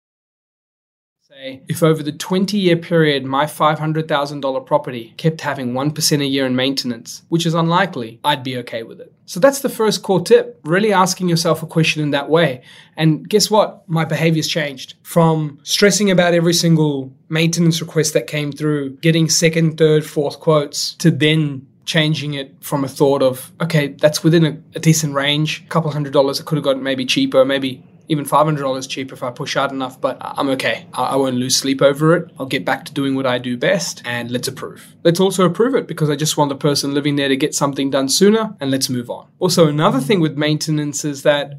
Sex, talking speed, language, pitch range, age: male, 205 wpm, English, 140-170 Hz, 20-39